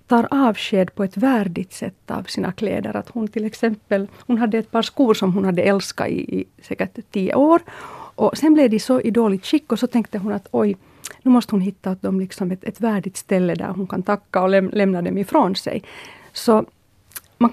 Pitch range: 195-250 Hz